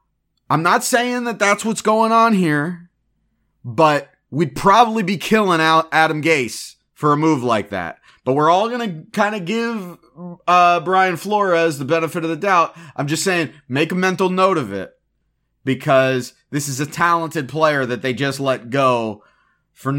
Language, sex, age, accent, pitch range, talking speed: English, male, 30-49, American, 135-170 Hz, 175 wpm